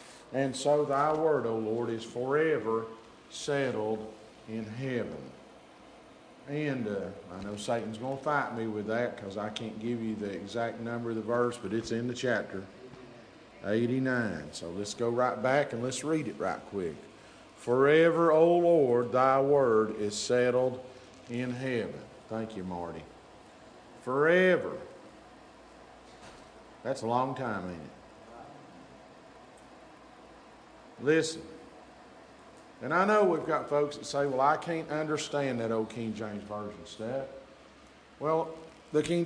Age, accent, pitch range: 50-69, American, 115-160 Hz